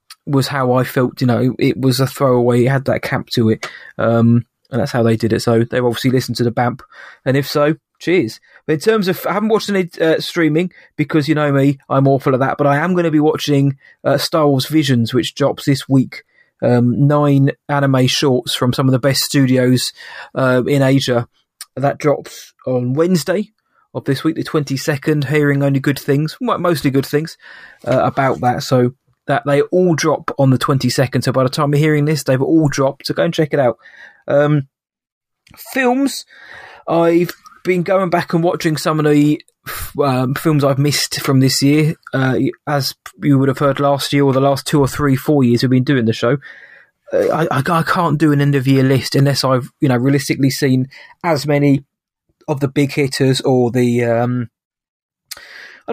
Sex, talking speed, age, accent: male, 200 wpm, 20-39, British